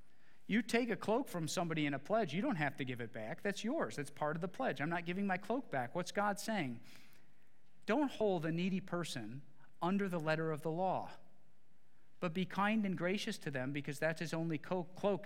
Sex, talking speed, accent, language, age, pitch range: male, 215 wpm, American, English, 50-69, 145-180 Hz